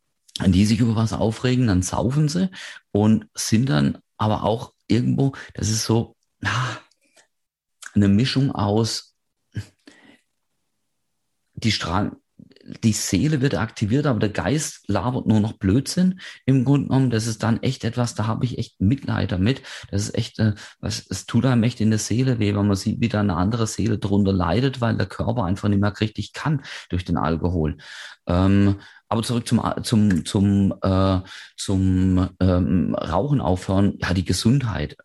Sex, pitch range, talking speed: male, 90-115 Hz, 160 wpm